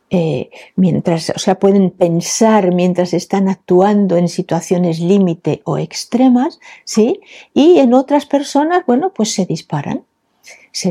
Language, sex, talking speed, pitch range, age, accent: Spanish, female, 130 wpm, 175-230 Hz, 50-69, Spanish